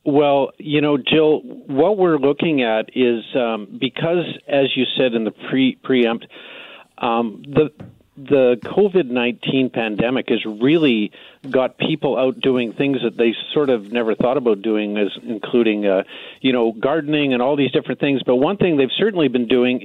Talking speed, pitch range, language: 170 wpm, 115-140 Hz, English